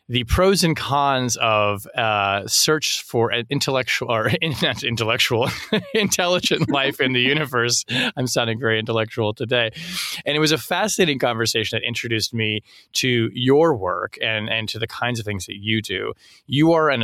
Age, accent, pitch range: 30-49, American, 110-145 Hz